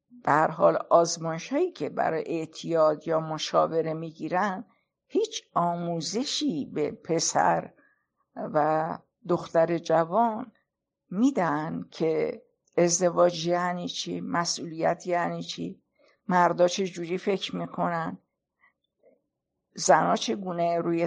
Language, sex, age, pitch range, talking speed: Persian, female, 50-69, 165-225 Hz, 95 wpm